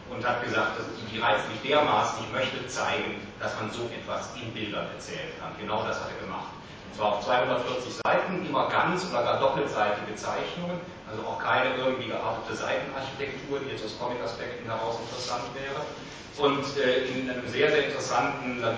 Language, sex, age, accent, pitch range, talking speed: German, male, 30-49, German, 115-140 Hz, 170 wpm